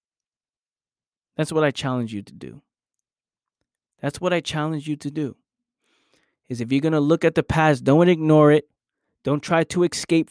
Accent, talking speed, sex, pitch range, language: American, 175 wpm, male, 120-155 Hz, English